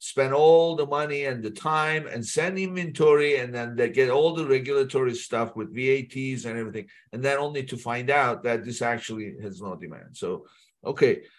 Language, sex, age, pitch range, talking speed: English, male, 50-69, 130-175 Hz, 190 wpm